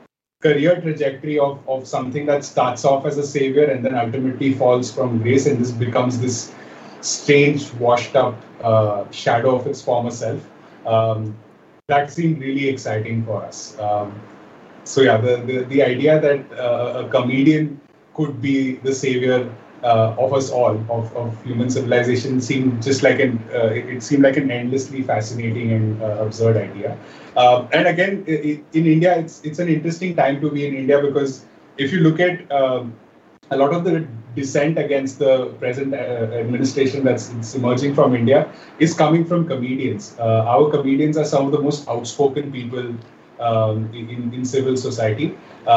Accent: Indian